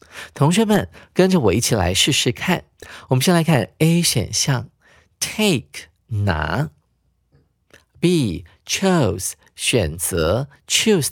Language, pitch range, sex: Chinese, 110-175 Hz, male